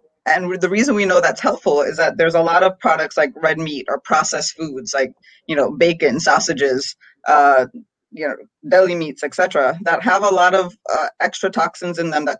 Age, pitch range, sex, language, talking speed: 20-39, 155-190 Hz, female, English, 205 wpm